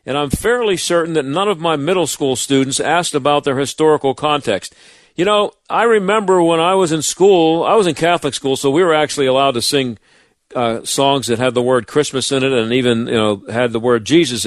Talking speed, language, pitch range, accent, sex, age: 225 wpm, English, 130-175 Hz, American, male, 50-69